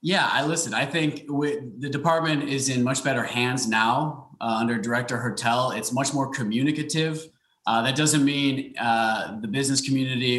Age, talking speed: 20-39, 170 wpm